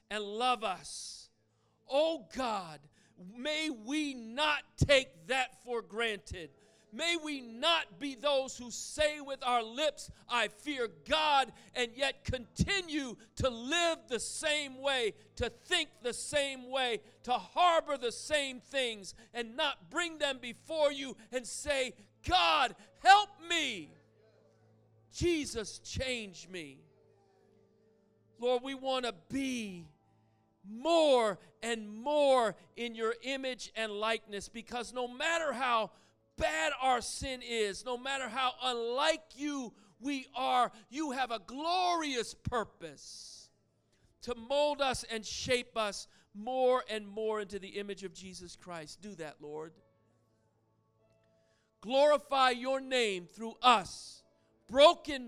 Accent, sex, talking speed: American, male, 125 wpm